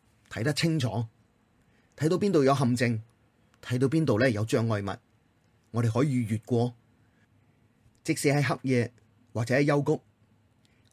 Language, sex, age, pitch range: Chinese, male, 30-49, 110-130 Hz